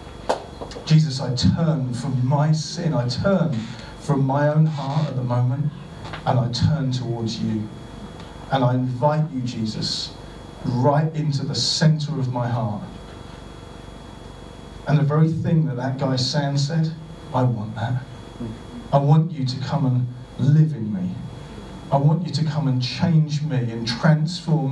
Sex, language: male, English